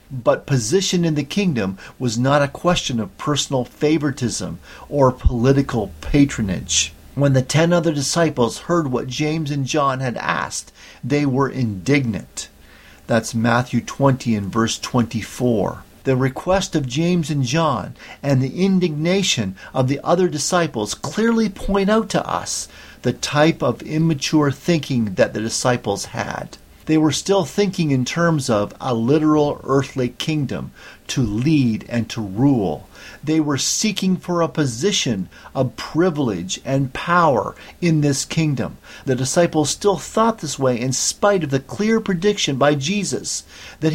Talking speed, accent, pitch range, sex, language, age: 145 wpm, American, 120-170 Hz, male, English, 50-69